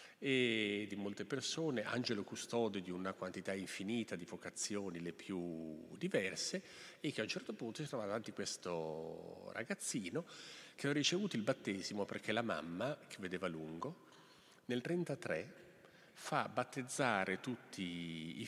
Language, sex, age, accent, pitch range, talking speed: Italian, male, 40-59, native, 90-130 Hz, 140 wpm